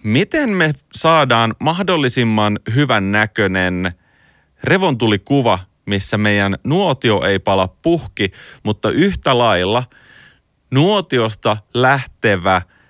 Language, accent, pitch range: Finnish, native, 95-130 Hz